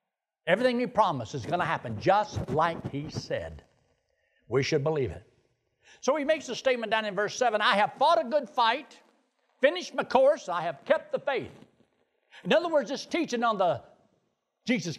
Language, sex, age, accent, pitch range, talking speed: English, male, 60-79, American, 190-275 Hz, 185 wpm